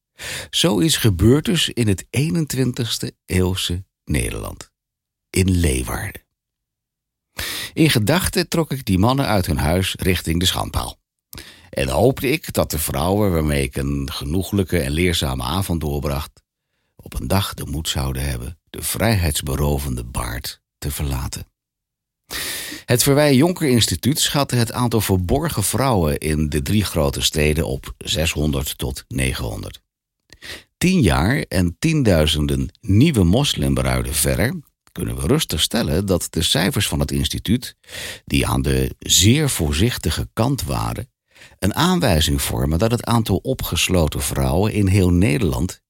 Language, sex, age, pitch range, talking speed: Dutch, male, 60-79, 75-115 Hz, 135 wpm